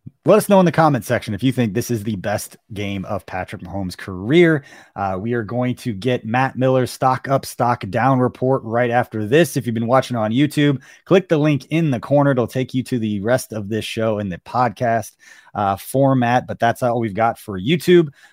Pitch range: 115-140 Hz